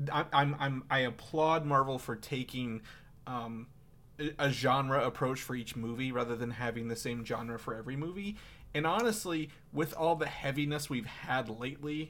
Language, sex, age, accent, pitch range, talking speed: English, male, 30-49, American, 120-150 Hz, 160 wpm